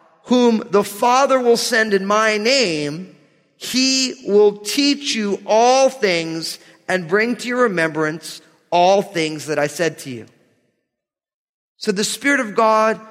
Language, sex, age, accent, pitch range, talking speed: English, male, 40-59, American, 195-265 Hz, 140 wpm